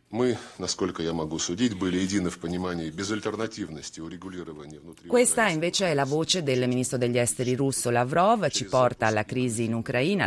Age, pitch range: 30-49, 105-125 Hz